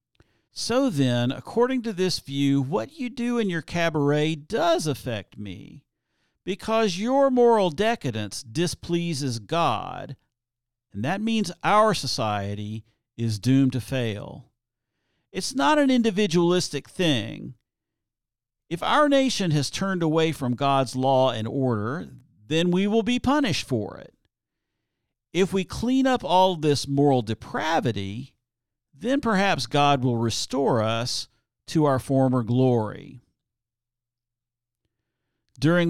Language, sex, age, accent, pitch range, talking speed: English, male, 50-69, American, 120-175 Hz, 120 wpm